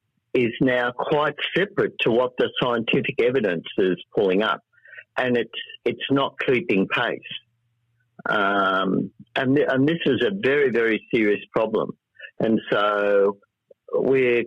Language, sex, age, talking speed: English, male, 50-69, 130 wpm